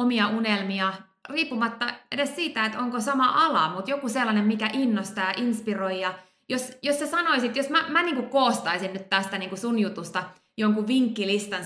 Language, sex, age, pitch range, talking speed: Finnish, female, 20-39, 195-245 Hz, 165 wpm